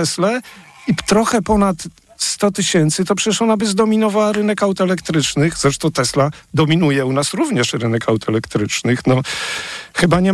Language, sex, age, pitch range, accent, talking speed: Polish, male, 50-69, 150-195 Hz, native, 145 wpm